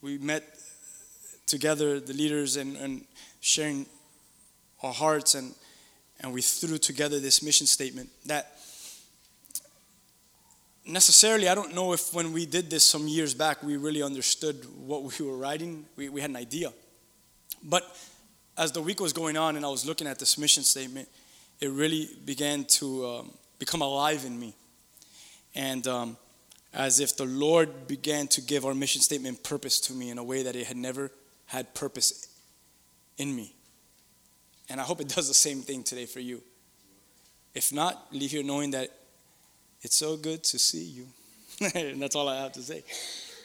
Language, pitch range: English, 135-155 Hz